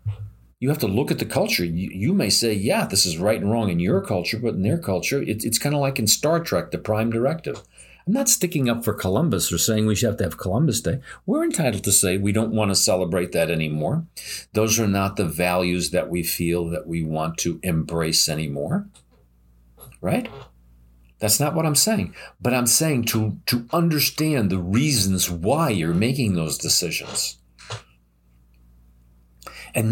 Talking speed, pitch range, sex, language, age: 190 wpm, 85-130 Hz, male, English, 50-69